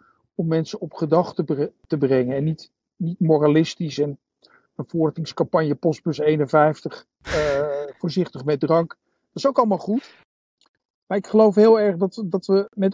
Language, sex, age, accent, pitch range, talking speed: Dutch, male, 50-69, Dutch, 165-195 Hz, 155 wpm